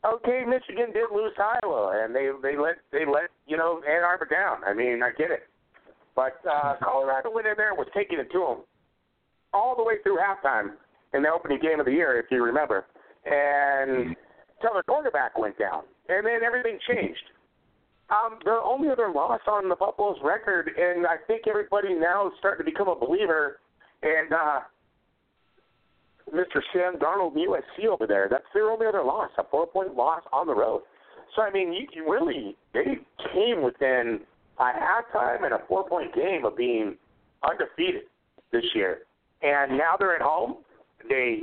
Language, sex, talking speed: English, male, 180 wpm